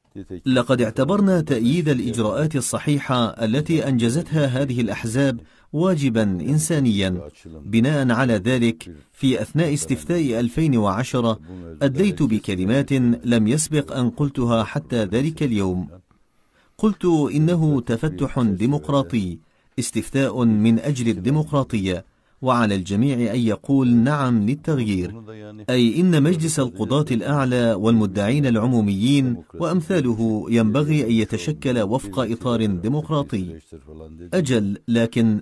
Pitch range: 110-145 Hz